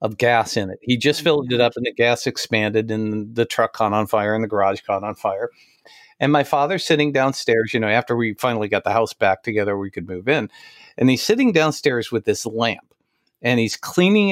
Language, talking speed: English, 225 wpm